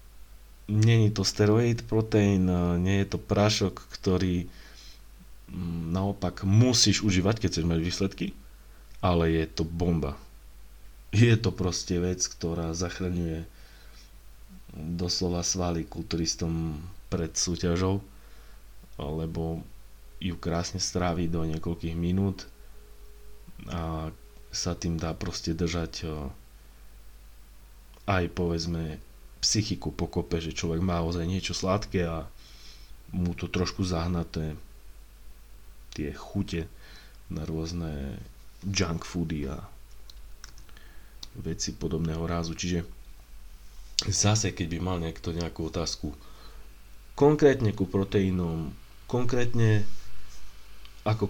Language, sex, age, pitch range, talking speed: Slovak, male, 30-49, 85-100 Hz, 95 wpm